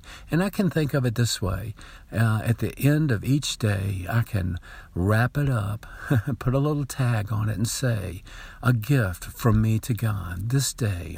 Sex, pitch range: male, 105-135 Hz